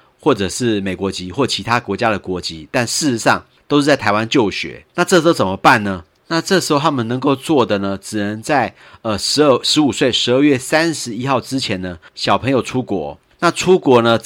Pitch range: 100-140 Hz